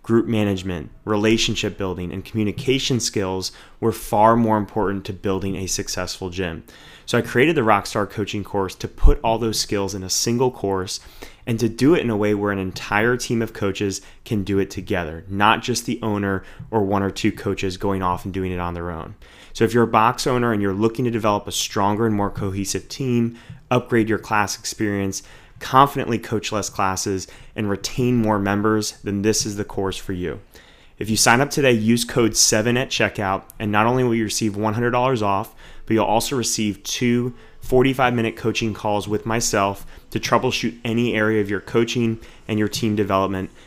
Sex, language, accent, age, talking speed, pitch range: male, English, American, 30-49, 195 wpm, 95-115 Hz